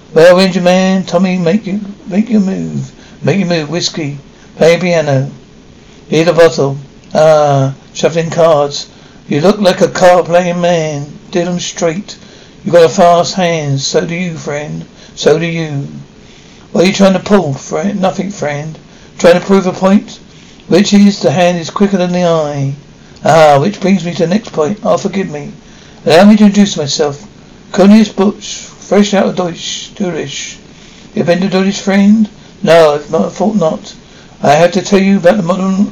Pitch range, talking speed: 165-200 Hz, 180 wpm